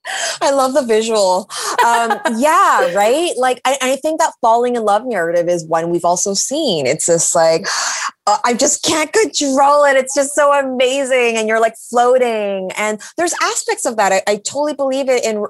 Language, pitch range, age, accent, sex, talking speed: English, 195-265 Hz, 20-39, American, female, 190 wpm